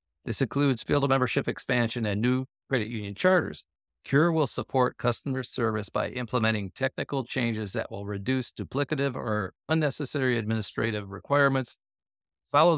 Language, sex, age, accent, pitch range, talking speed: English, male, 50-69, American, 105-135 Hz, 135 wpm